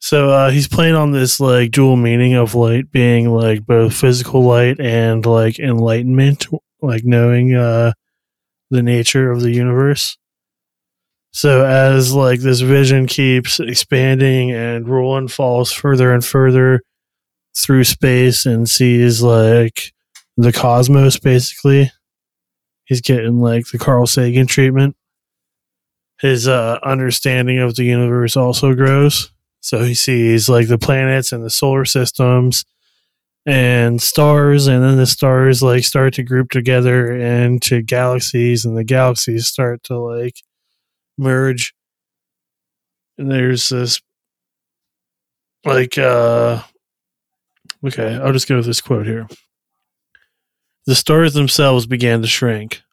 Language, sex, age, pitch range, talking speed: English, male, 20-39, 120-135 Hz, 125 wpm